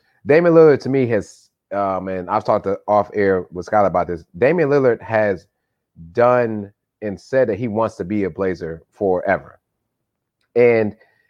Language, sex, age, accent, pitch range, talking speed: English, male, 30-49, American, 110-160 Hz, 165 wpm